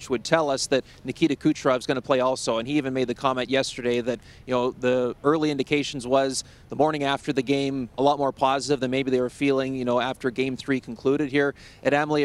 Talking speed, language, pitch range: 235 wpm, English, 130-155 Hz